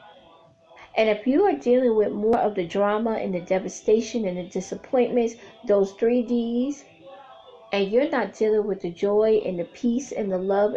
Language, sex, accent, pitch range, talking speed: English, female, American, 190-225 Hz, 180 wpm